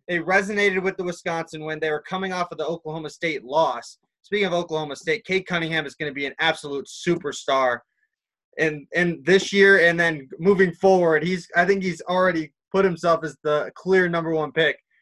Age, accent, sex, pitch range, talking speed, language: 20-39, American, male, 155-185 Hz, 195 wpm, English